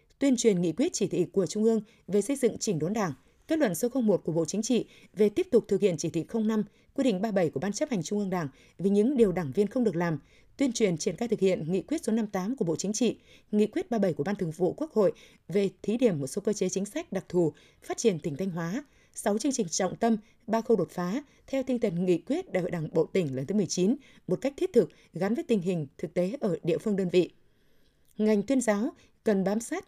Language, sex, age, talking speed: Vietnamese, female, 20-39, 265 wpm